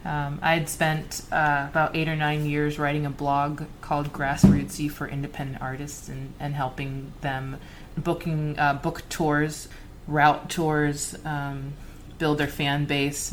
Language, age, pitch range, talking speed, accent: English, 20-39, 140-150 Hz, 150 wpm, American